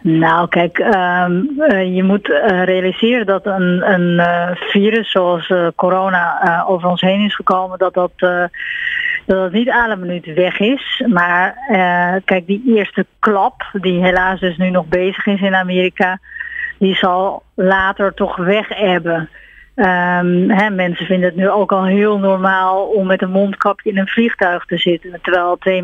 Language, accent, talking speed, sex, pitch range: Dutch, Dutch, 160 wpm, female, 185-220 Hz